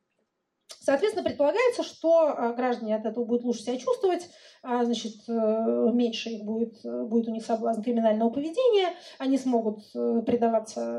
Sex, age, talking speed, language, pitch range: female, 30-49, 125 wpm, Russian, 235-310 Hz